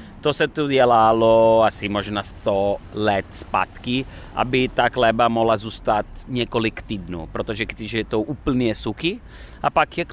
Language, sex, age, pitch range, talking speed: Czech, male, 30-49, 105-130 Hz, 150 wpm